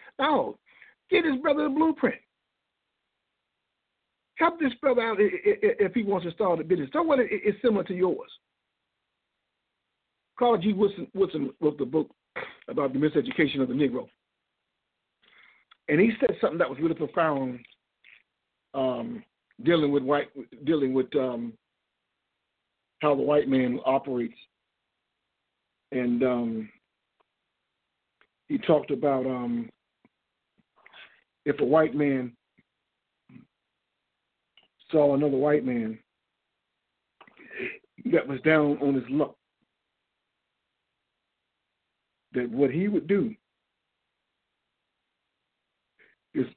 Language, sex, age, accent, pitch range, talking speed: English, male, 50-69, American, 135-220 Hz, 105 wpm